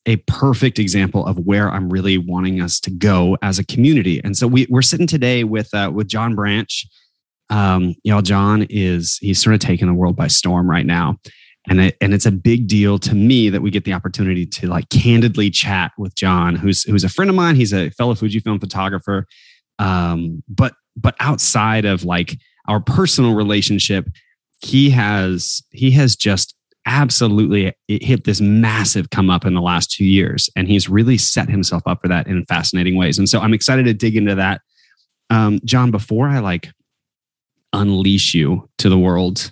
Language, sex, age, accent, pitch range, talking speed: English, male, 20-39, American, 95-115 Hz, 185 wpm